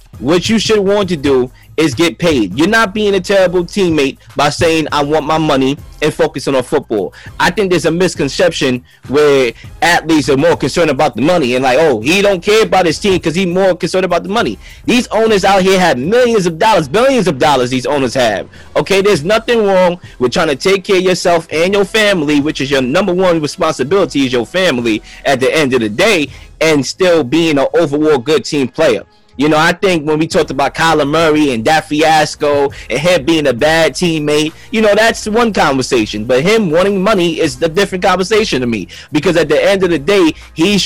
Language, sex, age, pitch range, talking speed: English, male, 20-39, 150-195 Hz, 215 wpm